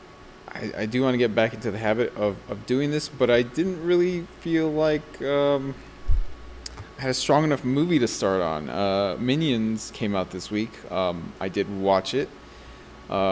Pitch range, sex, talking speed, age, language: 100-140 Hz, male, 185 wpm, 20-39, English